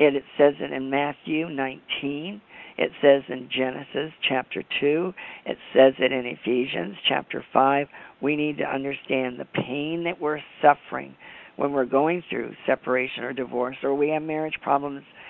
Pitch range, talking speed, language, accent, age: 130-145 Hz, 155 wpm, English, American, 50-69